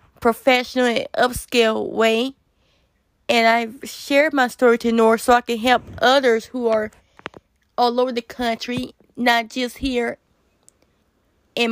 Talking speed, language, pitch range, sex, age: 135 wpm, English, 230-250 Hz, female, 20-39